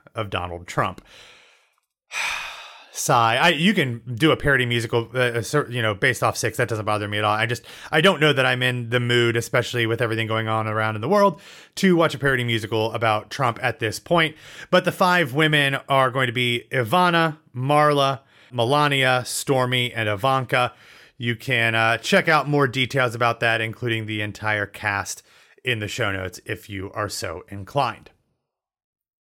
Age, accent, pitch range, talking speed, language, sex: 30-49, American, 115-155 Hz, 180 wpm, English, male